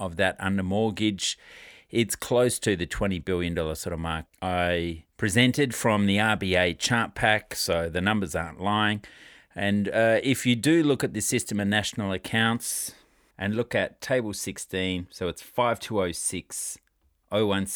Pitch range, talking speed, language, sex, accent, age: 90-115 Hz, 155 wpm, English, male, Australian, 40-59